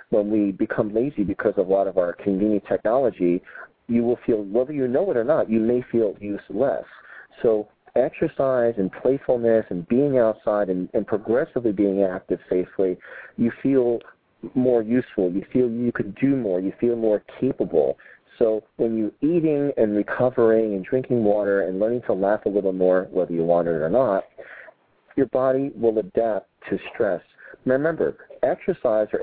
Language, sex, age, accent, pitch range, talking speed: English, male, 40-59, American, 95-120 Hz, 170 wpm